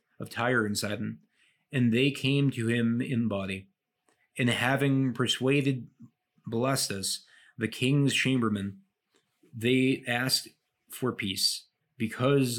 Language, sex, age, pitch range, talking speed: English, male, 30-49, 110-130 Hz, 110 wpm